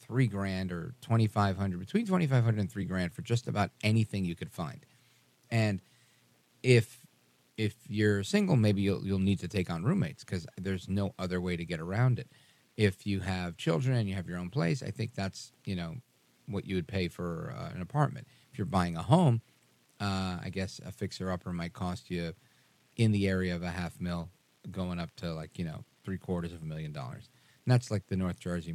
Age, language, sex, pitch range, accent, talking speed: 40-59, English, male, 90-125 Hz, American, 210 wpm